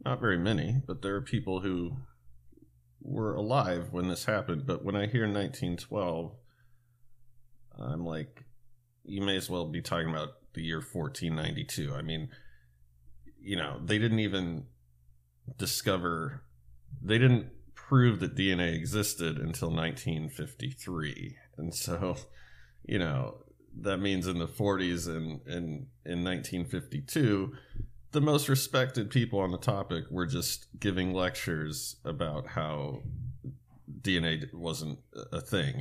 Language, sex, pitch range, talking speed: English, male, 75-115 Hz, 125 wpm